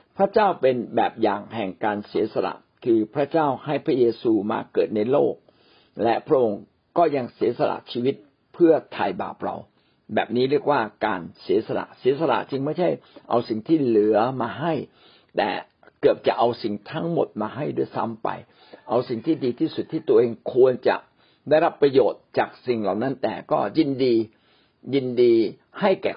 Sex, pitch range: male, 115-160 Hz